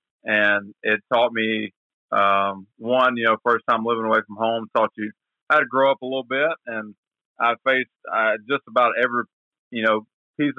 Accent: American